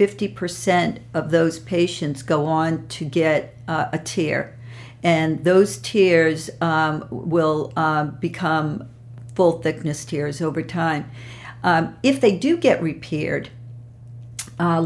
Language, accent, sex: English, American, female